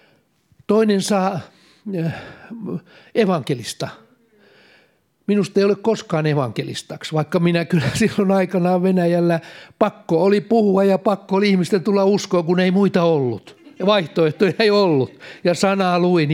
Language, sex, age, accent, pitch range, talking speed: Finnish, male, 60-79, native, 145-195 Hz, 120 wpm